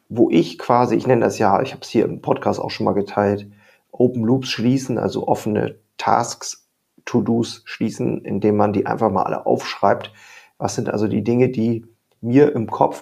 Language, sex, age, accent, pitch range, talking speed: German, male, 40-59, German, 105-120 Hz, 190 wpm